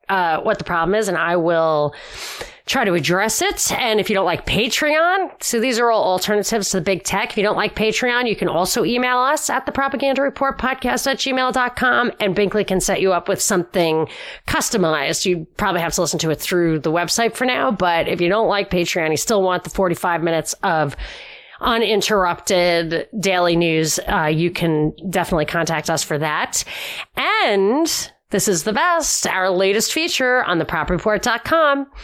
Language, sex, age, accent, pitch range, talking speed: English, female, 30-49, American, 175-245 Hz, 180 wpm